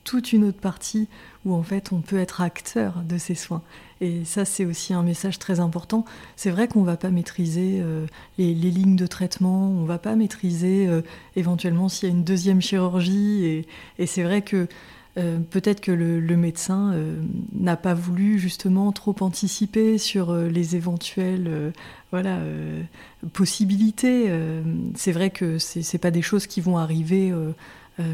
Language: French